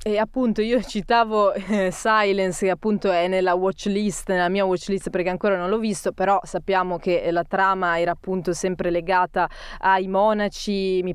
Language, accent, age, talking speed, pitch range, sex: Italian, native, 20-39, 170 wpm, 180-205 Hz, female